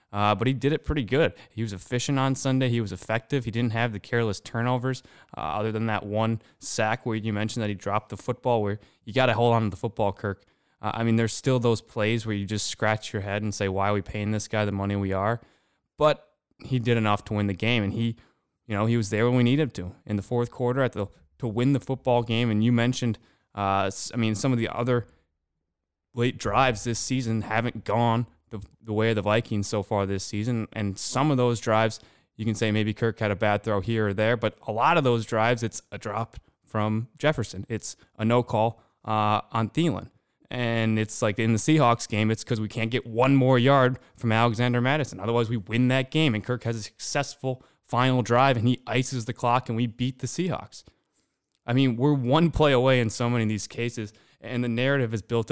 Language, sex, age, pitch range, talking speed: English, male, 20-39, 105-125 Hz, 235 wpm